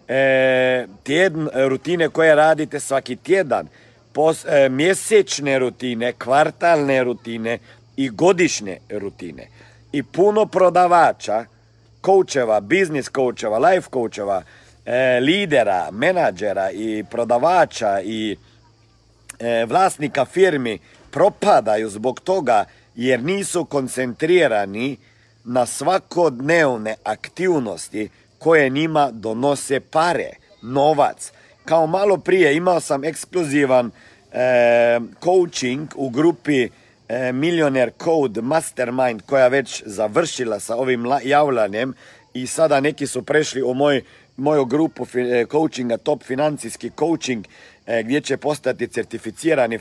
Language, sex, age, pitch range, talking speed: Croatian, male, 50-69, 115-155 Hz, 105 wpm